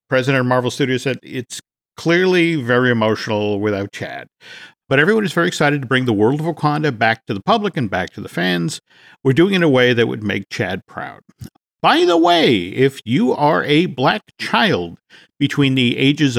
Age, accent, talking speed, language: 50-69, American, 200 wpm, English